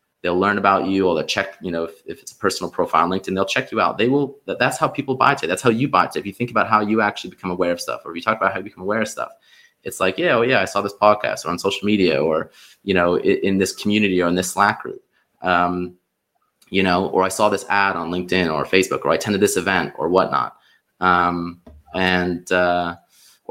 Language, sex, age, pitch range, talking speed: English, male, 20-39, 90-100 Hz, 265 wpm